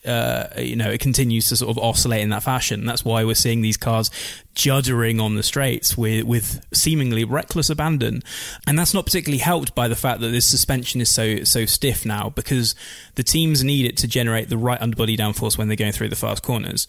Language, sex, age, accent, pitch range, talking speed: English, male, 20-39, British, 110-125 Hz, 220 wpm